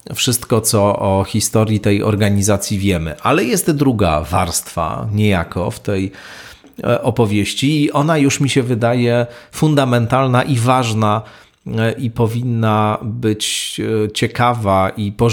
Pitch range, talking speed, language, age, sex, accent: 100-125 Hz, 115 wpm, Polish, 40-59, male, native